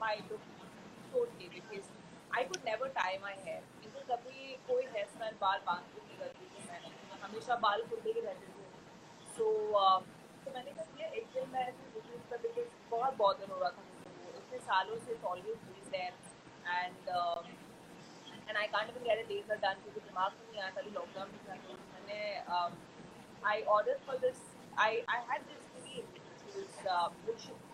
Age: 30-49